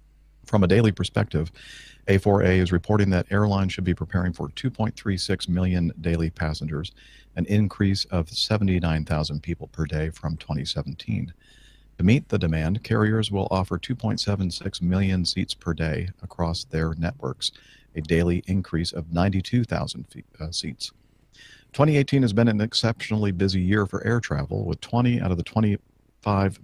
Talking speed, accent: 145 wpm, American